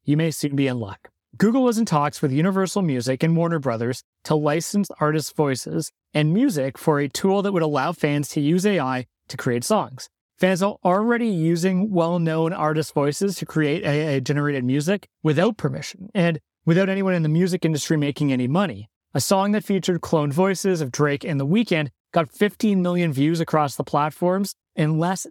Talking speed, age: 185 wpm, 30-49